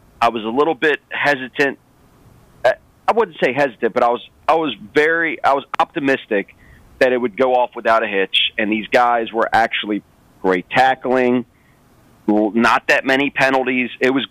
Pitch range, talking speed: 115-135 Hz, 170 wpm